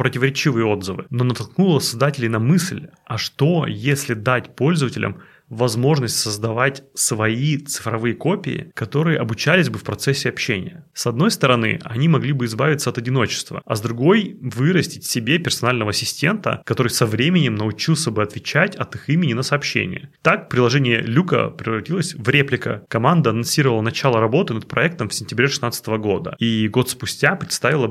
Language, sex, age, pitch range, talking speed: Russian, male, 30-49, 120-160 Hz, 150 wpm